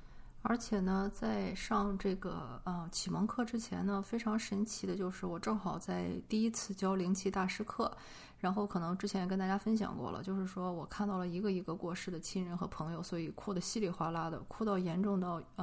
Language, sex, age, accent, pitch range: Chinese, female, 20-39, native, 175-205 Hz